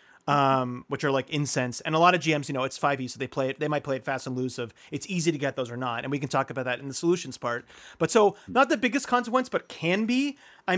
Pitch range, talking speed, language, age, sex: 140-185 Hz, 295 wpm, English, 30-49, male